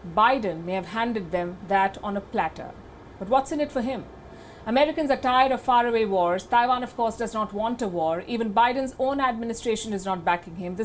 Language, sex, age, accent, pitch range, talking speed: English, female, 50-69, Indian, 195-250 Hz, 210 wpm